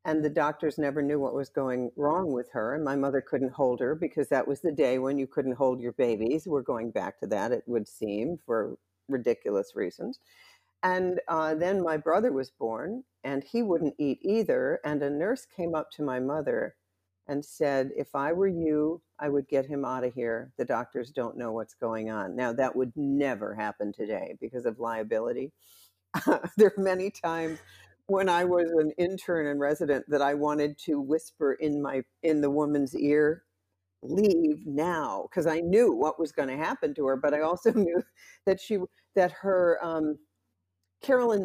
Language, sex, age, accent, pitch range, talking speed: English, female, 50-69, American, 135-170 Hz, 190 wpm